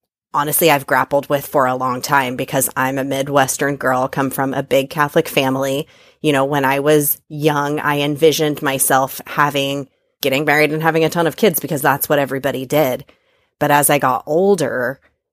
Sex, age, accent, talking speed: female, 30-49, American, 185 wpm